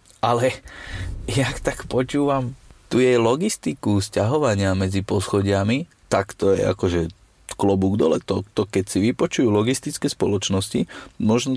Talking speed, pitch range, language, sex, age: 125 wpm, 100-125 Hz, Slovak, male, 30-49